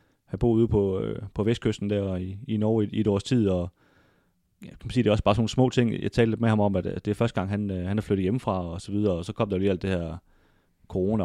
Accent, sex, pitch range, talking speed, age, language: native, male, 100-115 Hz, 300 wpm, 30-49, Danish